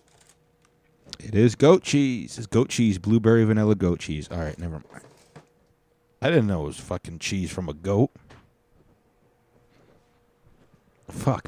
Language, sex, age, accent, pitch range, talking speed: English, male, 30-49, American, 85-120 Hz, 135 wpm